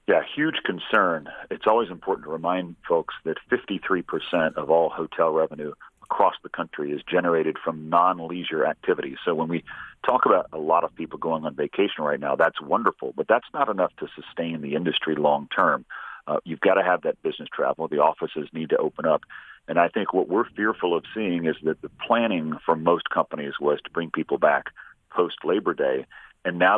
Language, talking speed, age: English, 195 wpm, 40-59